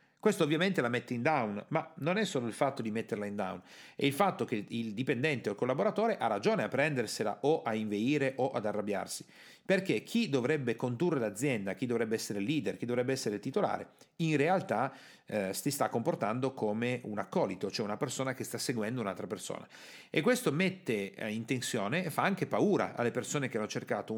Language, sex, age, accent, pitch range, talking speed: Italian, male, 40-59, native, 105-155 Hz, 195 wpm